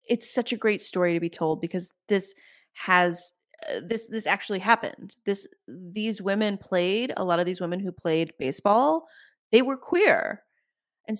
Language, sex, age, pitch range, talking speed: English, female, 30-49, 180-270 Hz, 170 wpm